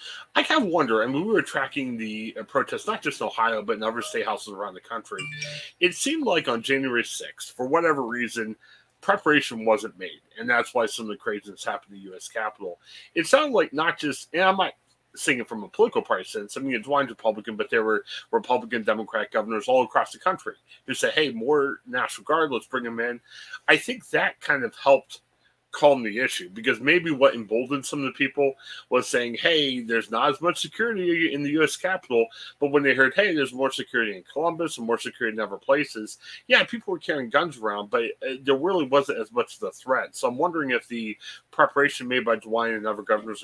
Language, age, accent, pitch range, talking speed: English, 30-49, American, 115-170 Hz, 220 wpm